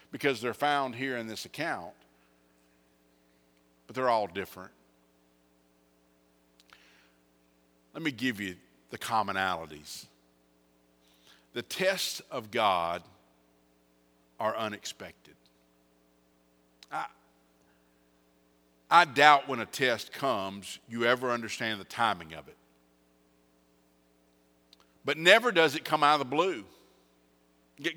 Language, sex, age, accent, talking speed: English, male, 50-69, American, 100 wpm